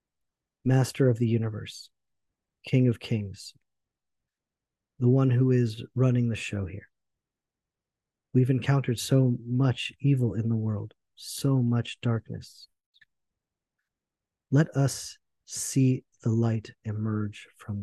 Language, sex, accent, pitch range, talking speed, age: English, male, American, 110-120 Hz, 110 wpm, 40-59